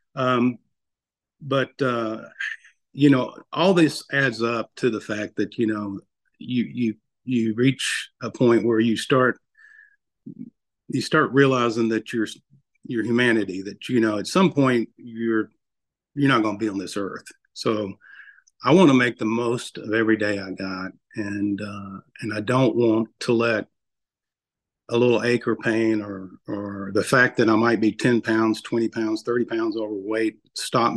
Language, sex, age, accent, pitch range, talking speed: English, male, 50-69, American, 105-130 Hz, 170 wpm